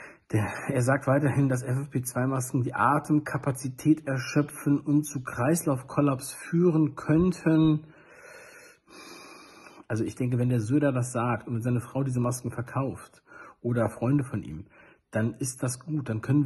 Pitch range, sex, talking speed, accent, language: 125-155 Hz, male, 135 wpm, German, German